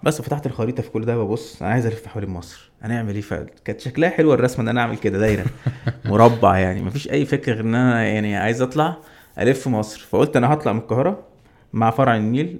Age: 20-39